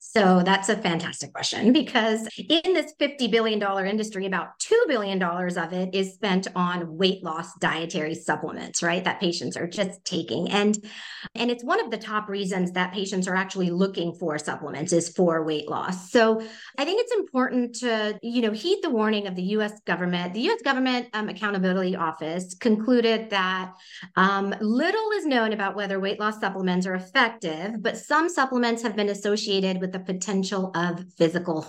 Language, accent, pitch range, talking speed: English, American, 185-240 Hz, 175 wpm